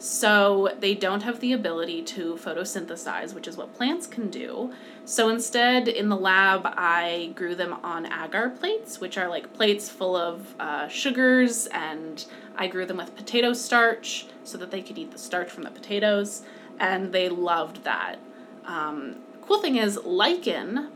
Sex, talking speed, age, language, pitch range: female, 170 wpm, 20-39, English, 185-240 Hz